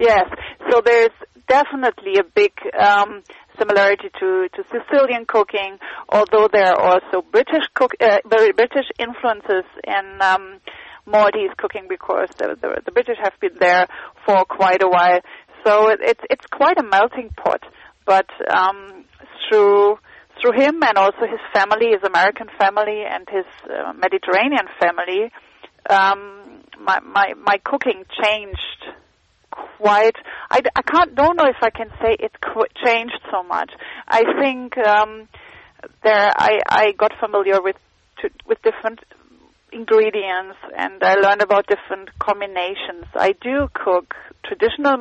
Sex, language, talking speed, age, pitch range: female, English, 140 wpm, 30-49, 195-275 Hz